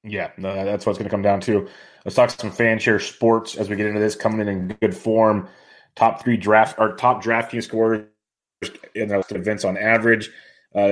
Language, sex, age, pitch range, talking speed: English, male, 30-49, 100-115 Hz, 205 wpm